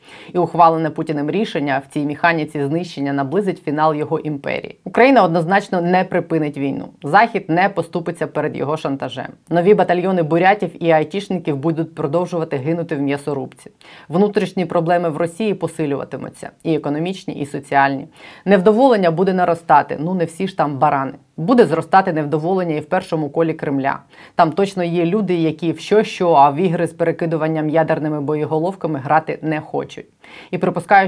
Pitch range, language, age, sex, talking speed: 150-175 Hz, Ukrainian, 20-39, female, 155 wpm